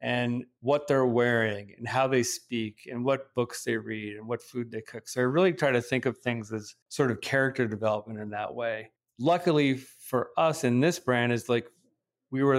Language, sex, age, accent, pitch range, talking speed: English, male, 40-59, American, 115-130 Hz, 210 wpm